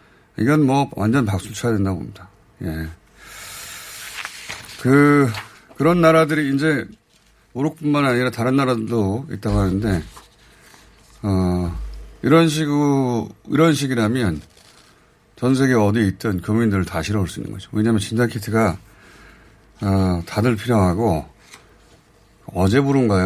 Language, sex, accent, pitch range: Korean, male, native, 95-135 Hz